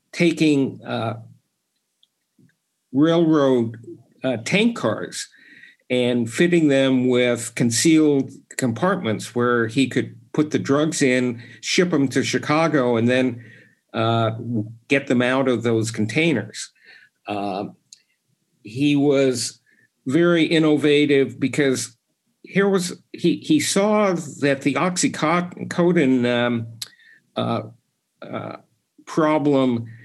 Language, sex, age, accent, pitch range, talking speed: English, male, 50-69, American, 120-155 Hz, 100 wpm